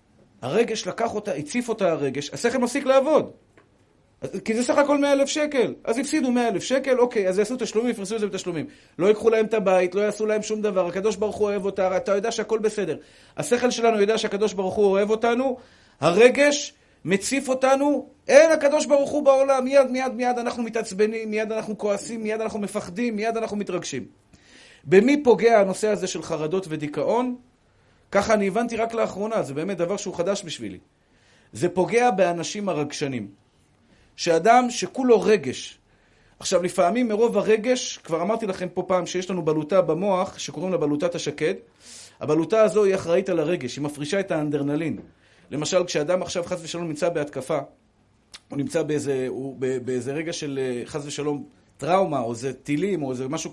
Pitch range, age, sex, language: 165-230 Hz, 40-59, male, Hebrew